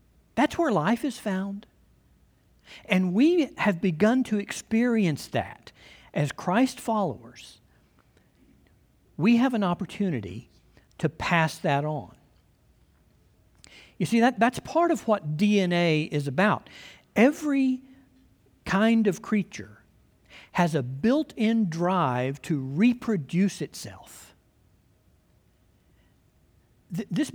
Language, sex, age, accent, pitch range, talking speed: English, male, 60-79, American, 155-240 Hz, 95 wpm